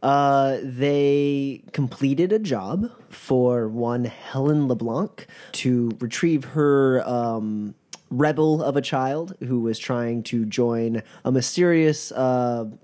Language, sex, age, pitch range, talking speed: English, male, 20-39, 115-145 Hz, 115 wpm